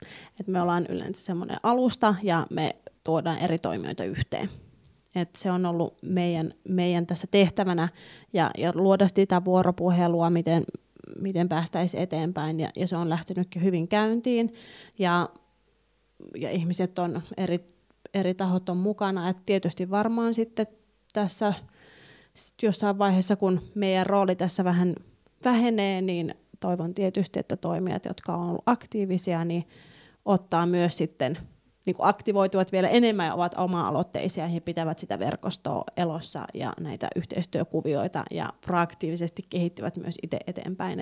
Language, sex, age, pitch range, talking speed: Finnish, female, 20-39, 170-200 Hz, 140 wpm